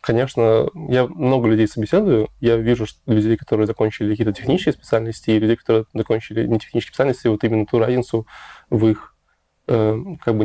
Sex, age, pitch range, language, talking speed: male, 20-39, 110-125 Hz, Russian, 165 wpm